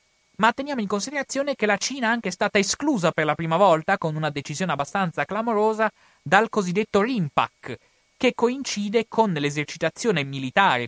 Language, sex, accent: Italian, male, native